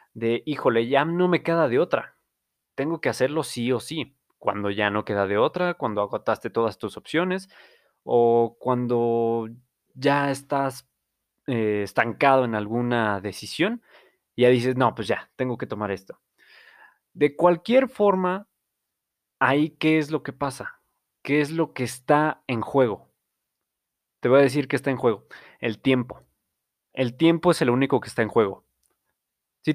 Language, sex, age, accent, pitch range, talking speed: Spanish, male, 20-39, Mexican, 110-150 Hz, 160 wpm